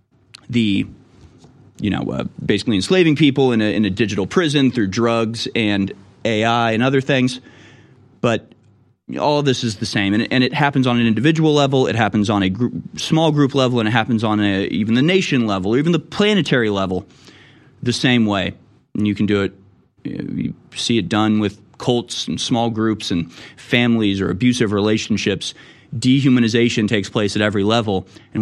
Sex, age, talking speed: male, 30-49, 190 wpm